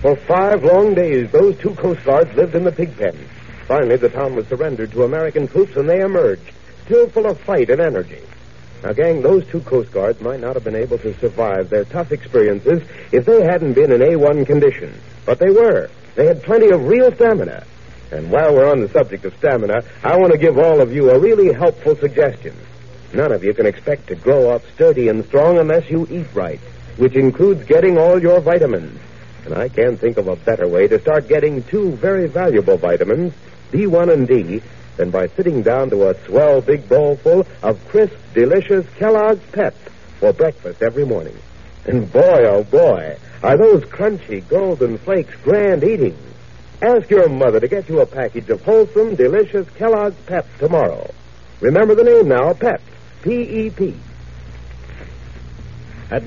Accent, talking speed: American, 180 wpm